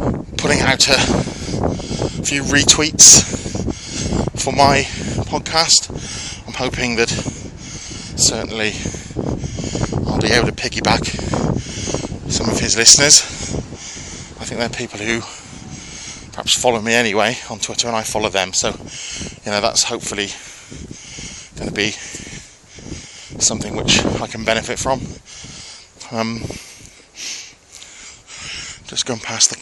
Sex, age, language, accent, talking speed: male, 20-39, English, British, 110 wpm